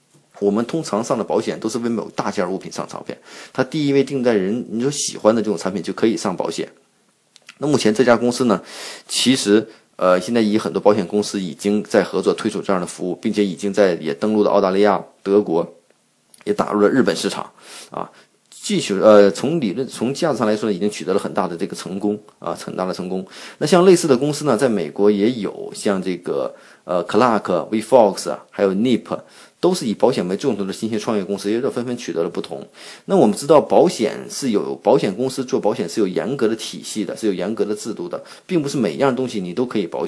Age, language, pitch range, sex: 30-49, Chinese, 105-135 Hz, male